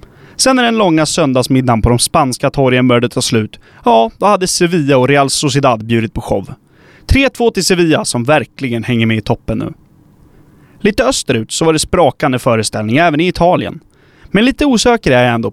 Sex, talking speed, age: male, 185 wpm, 20-39